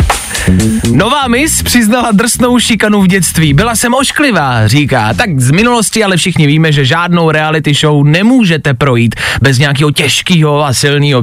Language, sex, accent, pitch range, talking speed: Czech, male, native, 145-230 Hz, 150 wpm